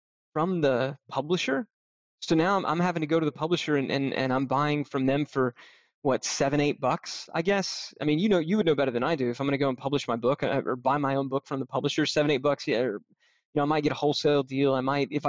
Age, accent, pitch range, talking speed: 20-39, American, 135-185 Hz, 275 wpm